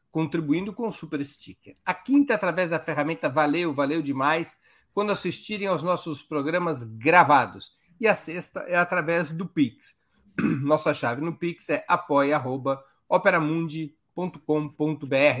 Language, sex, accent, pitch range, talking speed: Portuguese, male, Brazilian, 140-175 Hz, 125 wpm